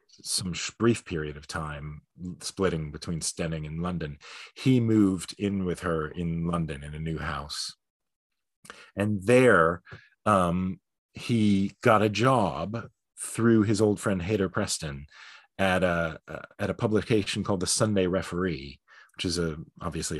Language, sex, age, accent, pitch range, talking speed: English, male, 40-59, American, 85-110 Hz, 145 wpm